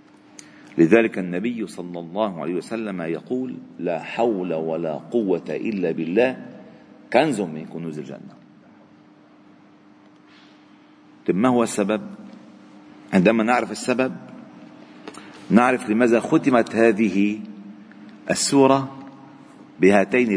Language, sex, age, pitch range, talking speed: Arabic, male, 50-69, 100-125 Hz, 85 wpm